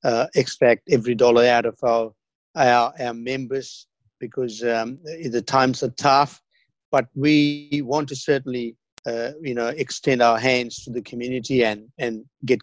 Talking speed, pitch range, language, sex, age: 155 wpm, 120-140 Hz, English, male, 60-79